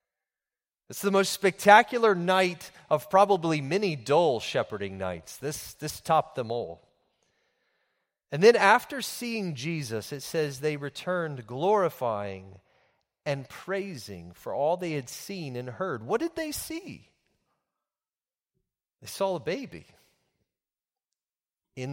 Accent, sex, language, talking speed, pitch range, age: American, male, English, 120 wpm, 115-185 Hz, 40-59